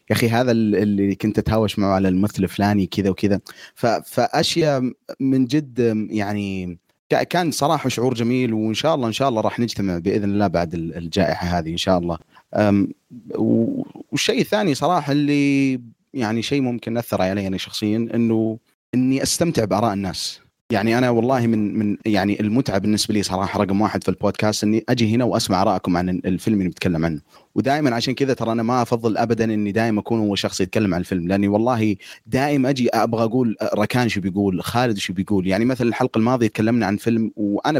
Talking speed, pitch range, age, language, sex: 180 wpm, 100-120 Hz, 30-49, Arabic, male